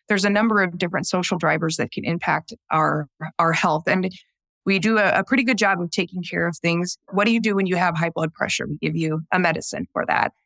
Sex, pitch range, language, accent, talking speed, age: female, 170-210 Hz, English, American, 245 wpm, 20-39